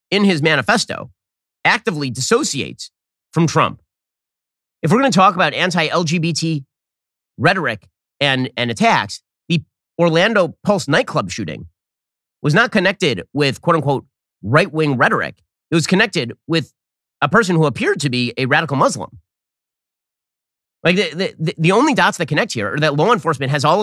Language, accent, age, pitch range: English, American, 30-49, 115-170 Hz